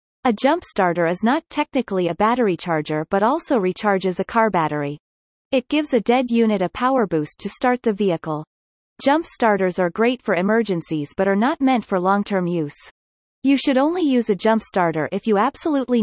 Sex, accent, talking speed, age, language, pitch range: female, American, 185 wpm, 30-49, English, 180-250 Hz